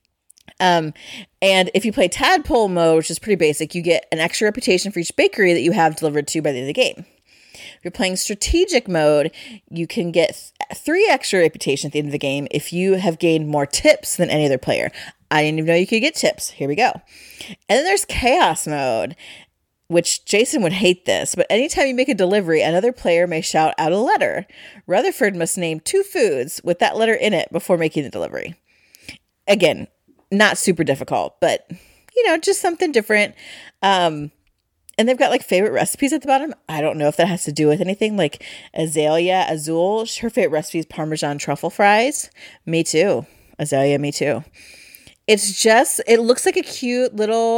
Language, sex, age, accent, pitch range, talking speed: English, female, 30-49, American, 160-235 Hz, 200 wpm